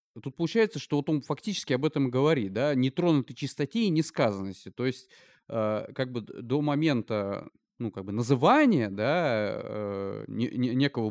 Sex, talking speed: male, 165 wpm